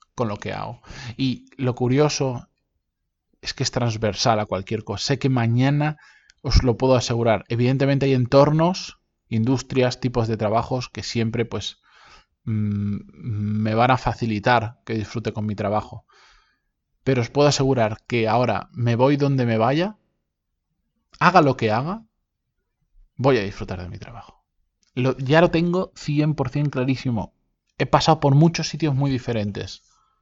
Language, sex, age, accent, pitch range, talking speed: Spanish, male, 20-39, Spanish, 110-135 Hz, 145 wpm